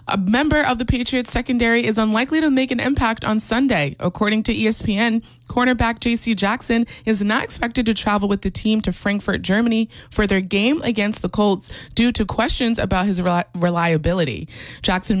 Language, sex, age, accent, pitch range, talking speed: English, female, 20-39, American, 180-230 Hz, 175 wpm